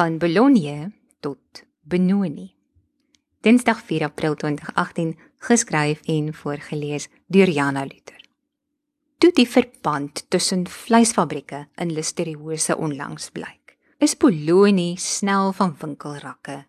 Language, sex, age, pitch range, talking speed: English, female, 20-39, 150-215 Hz, 100 wpm